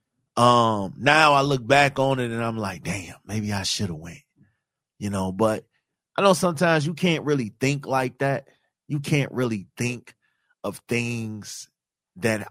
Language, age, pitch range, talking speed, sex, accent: English, 30-49, 100-130 Hz, 170 wpm, male, American